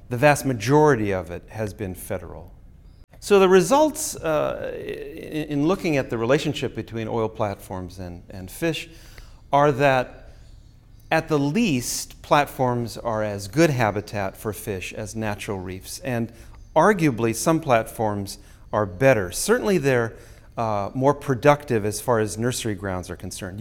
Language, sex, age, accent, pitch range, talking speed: English, male, 40-59, American, 105-145 Hz, 140 wpm